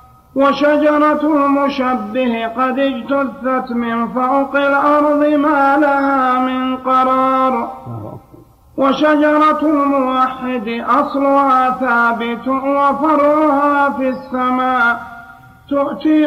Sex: male